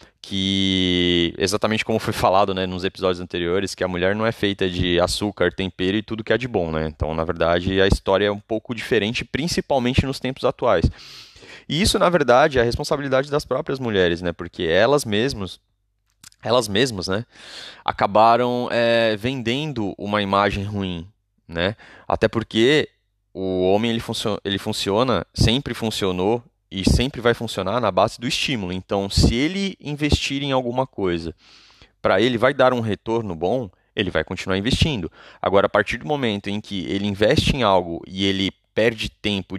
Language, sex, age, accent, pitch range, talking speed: Portuguese, male, 20-39, Brazilian, 95-120 Hz, 165 wpm